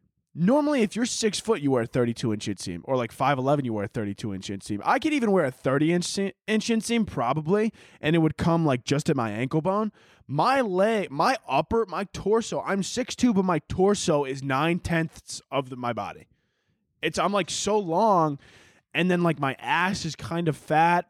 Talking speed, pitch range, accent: 210 wpm, 130-175 Hz, American